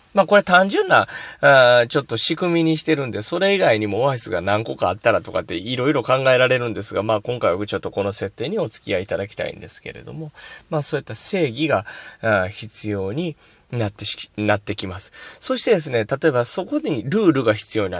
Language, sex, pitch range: Japanese, male, 110-175 Hz